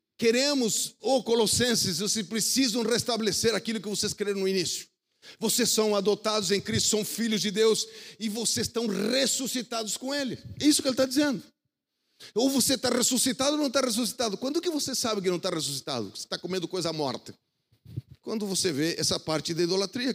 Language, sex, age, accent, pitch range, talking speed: Portuguese, male, 50-69, Brazilian, 145-230 Hz, 180 wpm